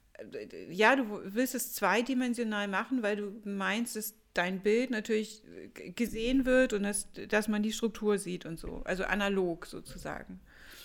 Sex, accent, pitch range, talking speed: female, German, 195-240 Hz, 155 wpm